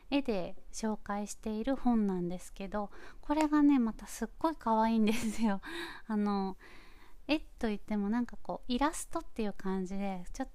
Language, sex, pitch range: Japanese, female, 190-240 Hz